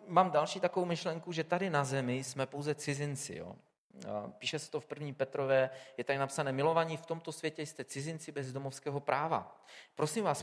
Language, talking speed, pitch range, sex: Czech, 185 wpm, 125-170 Hz, male